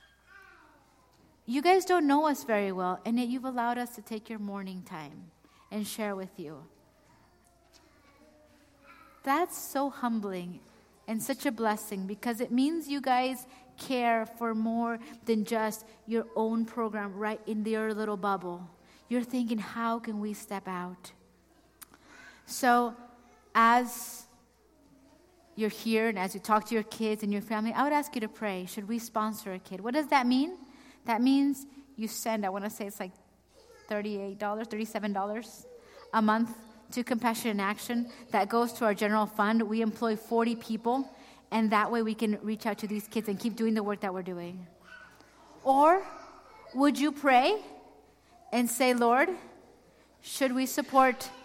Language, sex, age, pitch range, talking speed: English, female, 30-49, 210-255 Hz, 160 wpm